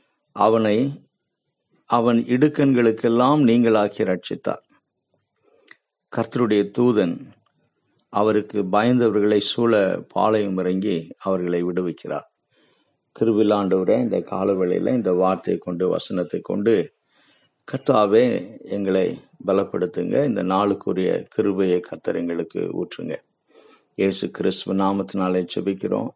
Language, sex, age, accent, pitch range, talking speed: Tamil, male, 50-69, native, 95-115 Hz, 80 wpm